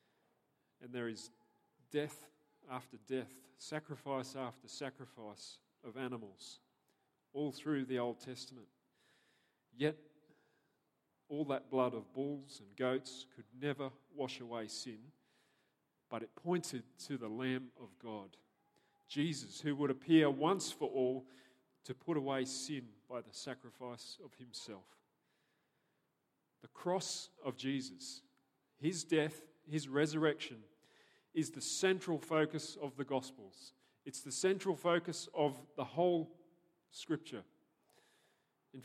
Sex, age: male, 40-59